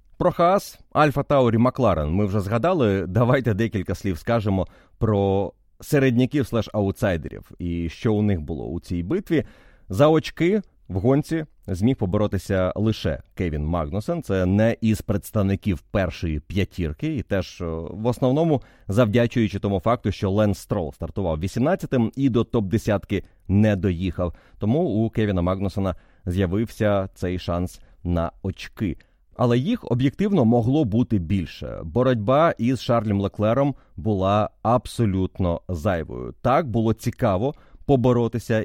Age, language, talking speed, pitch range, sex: 30-49, Ukrainian, 125 wpm, 95-125 Hz, male